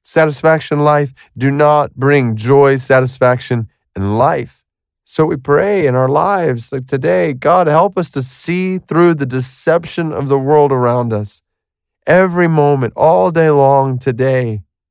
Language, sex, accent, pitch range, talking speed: English, male, American, 125-155 Hz, 145 wpm